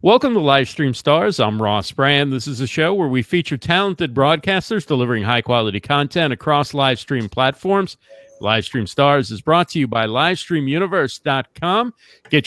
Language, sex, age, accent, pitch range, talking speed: English, male, 50-69, American, 135-180 Hz, 155 wpm